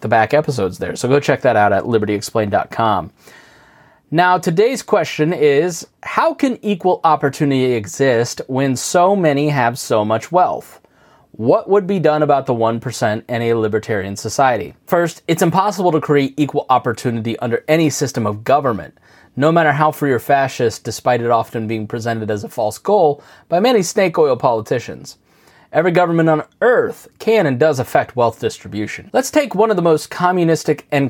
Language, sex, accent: English, male, American